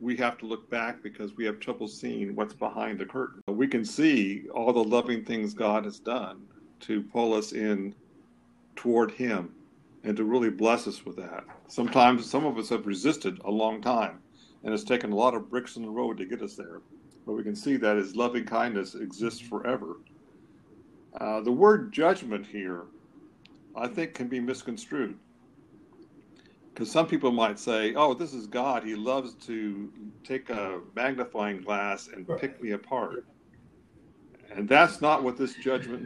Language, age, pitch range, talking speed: English, 50-69, 105-130 Hz, 175 wpm